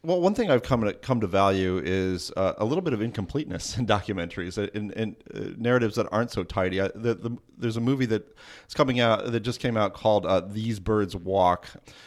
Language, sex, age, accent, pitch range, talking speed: English, male, 30-49, American, 100-125 Hz, 215 wpm